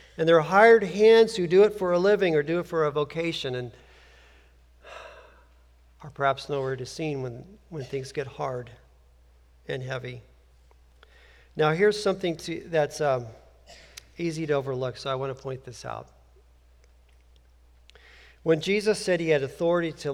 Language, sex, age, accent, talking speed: English, male, 50-69, American, 160 wpm